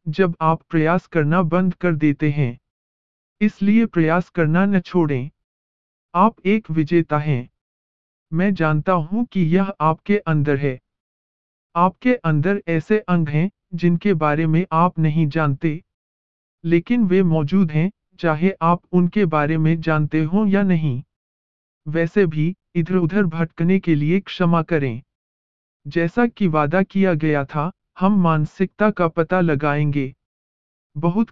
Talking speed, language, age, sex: 135 wpm, Hindi, 50-69, male